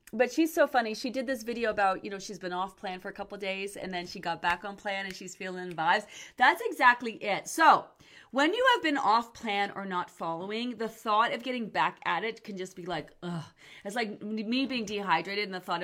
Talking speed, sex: 245 wpm, female